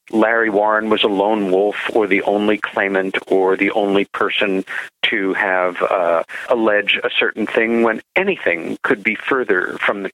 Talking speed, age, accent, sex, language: 165 wpm, 50-69, American, male, English